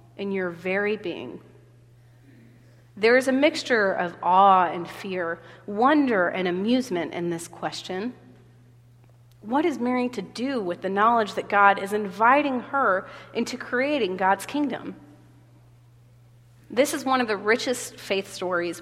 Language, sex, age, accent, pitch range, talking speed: English, female, 30-49, American, 150-235 Hz, 135 wpm